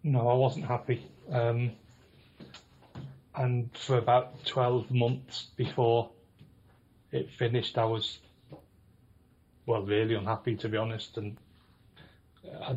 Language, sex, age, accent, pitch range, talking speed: English, male, 30-49, British, 115-130 Hz, 110 wpm